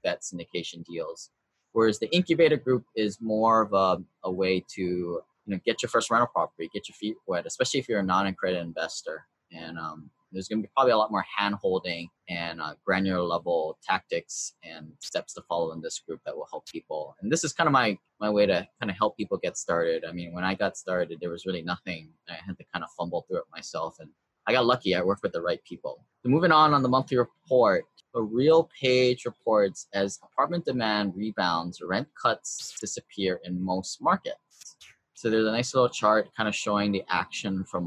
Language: English